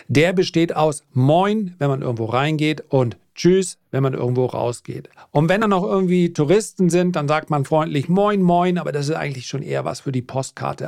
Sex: male